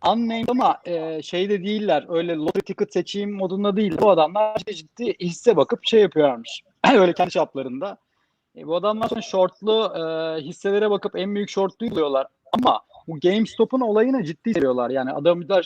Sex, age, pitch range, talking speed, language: male, 30-49, 170-205 Hz, 160 wpm, Turkish